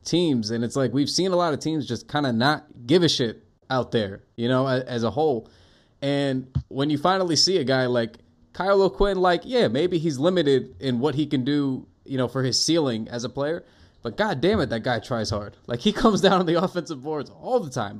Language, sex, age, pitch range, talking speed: English, male, 20-39, 120-150 Hz, 235 wpm